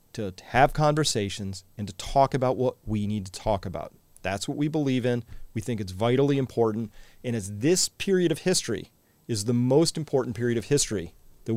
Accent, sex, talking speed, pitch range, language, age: American, male, 190 wpm, 100-130 Hz, English, 40-59